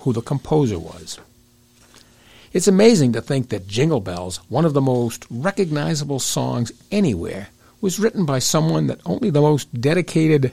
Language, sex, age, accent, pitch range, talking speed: English, male, 60-79, American, 115-160 Hz, 155 wpm